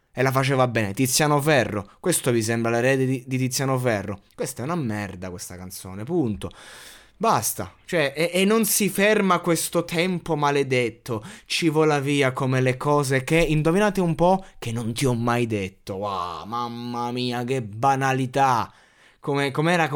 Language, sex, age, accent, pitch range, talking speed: Italian, male, 20-39, native, 110-155 Hz, 160 wpm